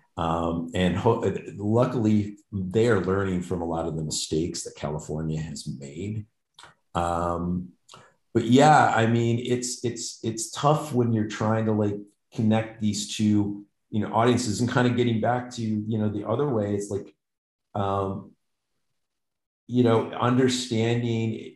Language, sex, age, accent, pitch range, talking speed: English, male, 40-59, American, 85-115 Hz, 150 wpm